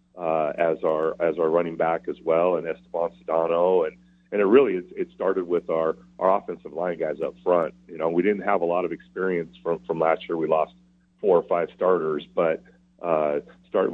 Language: English